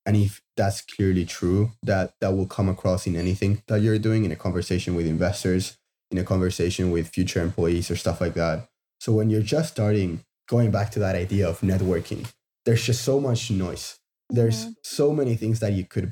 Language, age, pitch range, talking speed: English, 20-39, 90-110 Hz, 200 wpm